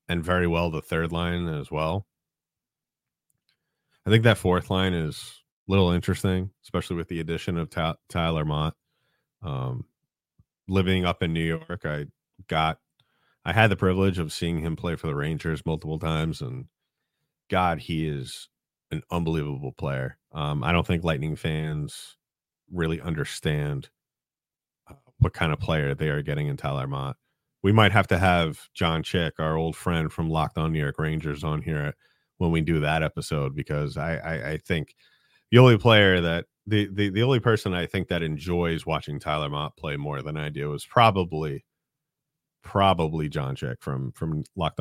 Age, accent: 30-49, American